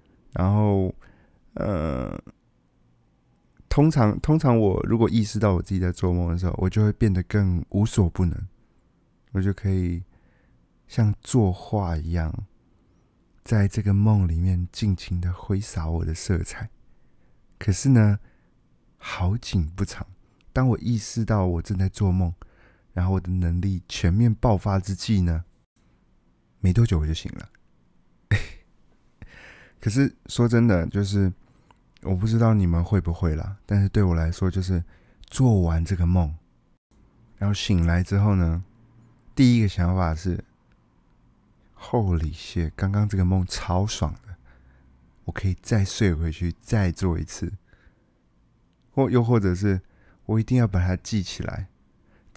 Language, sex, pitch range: Chinese, male, 90-110 Hz